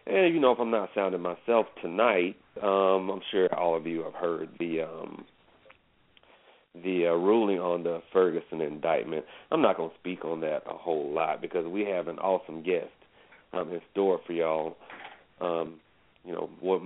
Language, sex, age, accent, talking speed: English, male, 40-59, American, 180 wpm